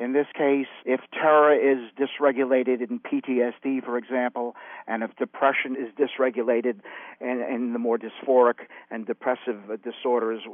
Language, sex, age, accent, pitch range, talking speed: English, male, 50-69, American, 115-140 Hz, 135 wpm